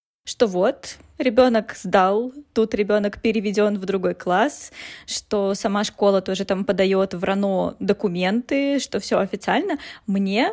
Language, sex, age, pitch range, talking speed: Russian, female, 20-39, 210-260 Hz, 125 wpm